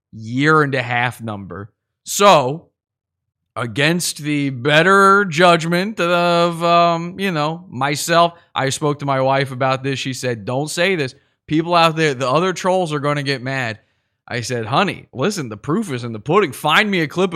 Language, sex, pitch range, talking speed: English, male, 125-175 Hz, 180 wpm